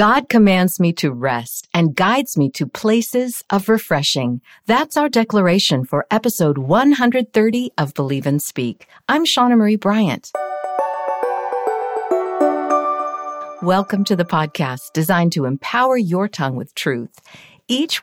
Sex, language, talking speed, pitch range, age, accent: female, English, 125 wpm, 150-220 Hz, 50-69, American